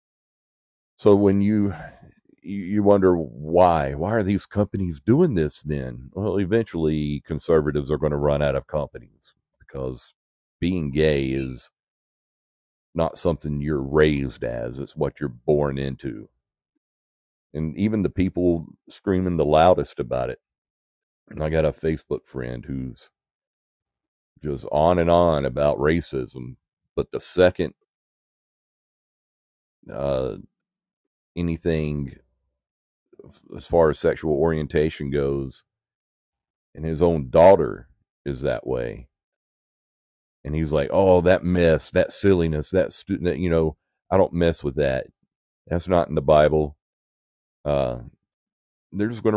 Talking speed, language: 125 wpm, English